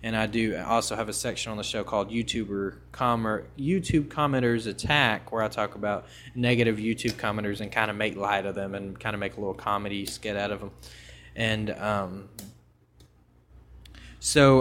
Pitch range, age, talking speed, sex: 105-135 Hz, 20-39, 180 wpm, male